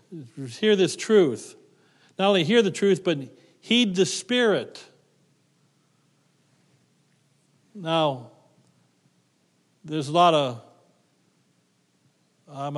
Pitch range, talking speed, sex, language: 145-170 Hz, 85 wpm, male, English